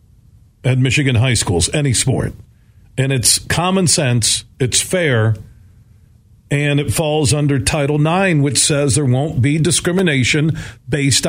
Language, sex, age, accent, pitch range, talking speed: English, male, 50-69, American, 115-170 Hz, 135 wpm